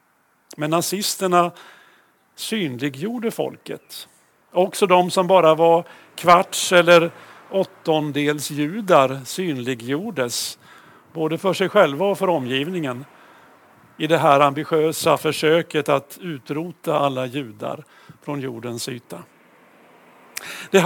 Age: 50-69